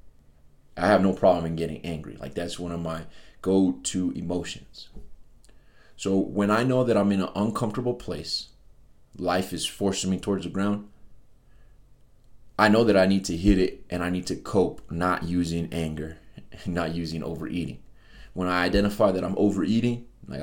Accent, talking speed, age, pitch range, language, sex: American, 165 wpm, 30-49, 90-115 Hz, English, male